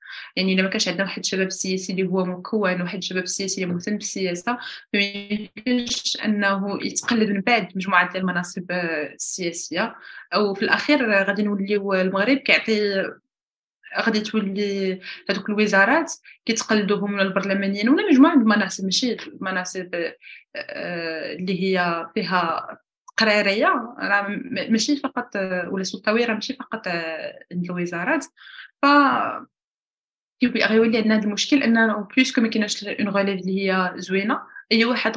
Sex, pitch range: female, 190-235 Hz